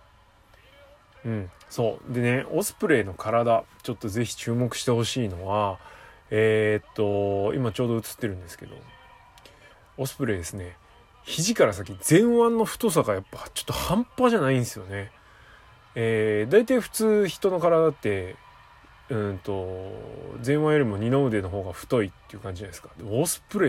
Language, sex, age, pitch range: Japanese, male, 20-39, 105-145 Hz